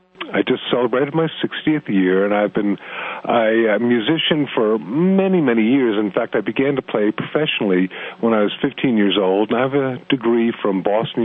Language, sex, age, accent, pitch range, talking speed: English, male, 50-69, American, 100-135 Hz, 190 wpm